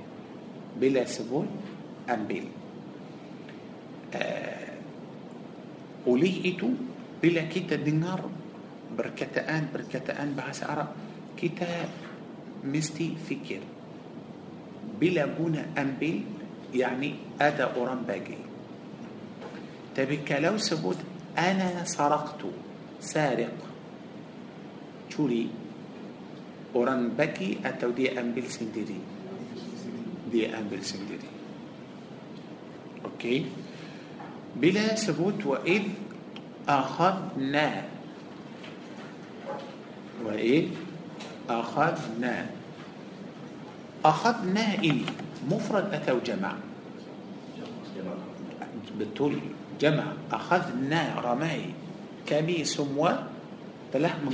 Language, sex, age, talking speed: Malay, male, 50-69, 60 wpm